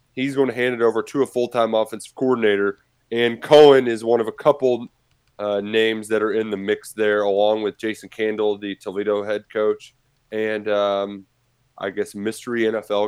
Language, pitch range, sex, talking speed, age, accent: English, 105-130 Hz, male, 185 wpm, 20-39, American